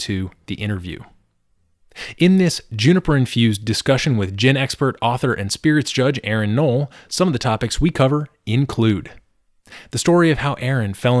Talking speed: 160 wpm